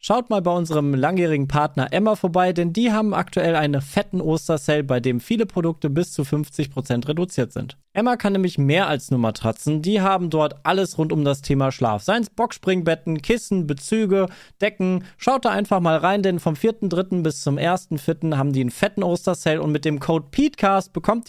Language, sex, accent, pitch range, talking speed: German, male, German, 140-185 Hz, 190 wpm